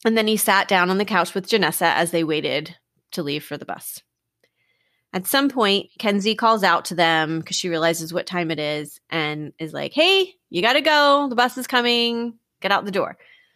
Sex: female